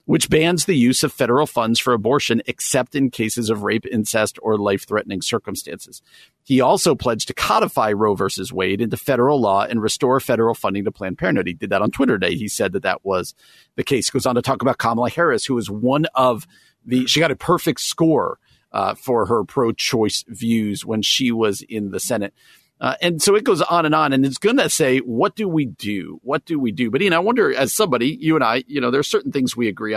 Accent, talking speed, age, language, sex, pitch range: American, 240 wpm, 50-69, English, male, 110-140 Hz